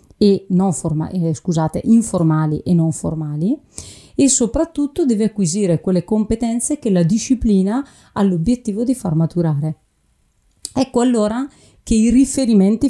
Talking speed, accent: 130 wpm, native